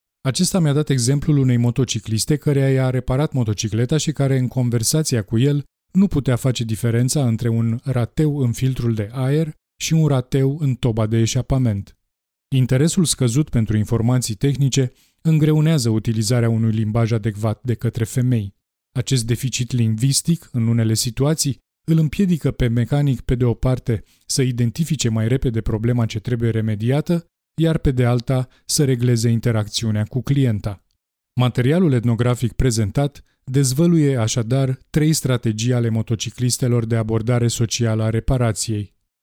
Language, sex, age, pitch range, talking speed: Romanian, male, 20-39, 115-135 Hz, 140 wpm